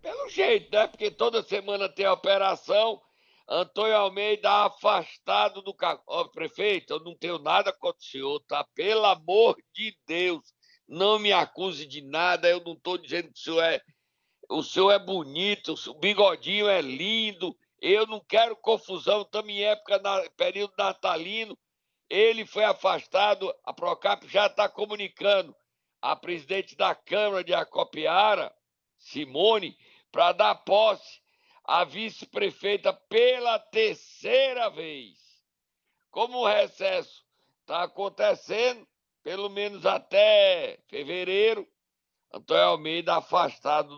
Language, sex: Portuguese, male